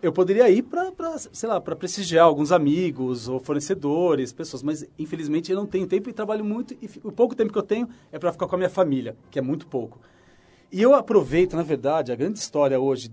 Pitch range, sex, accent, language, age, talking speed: 135-190 Hz, male, Brazilian, Portuguese, 40-59, 225 wpm